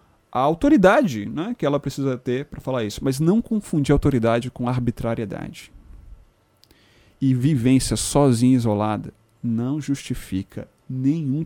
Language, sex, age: Portuguese, male, 30-49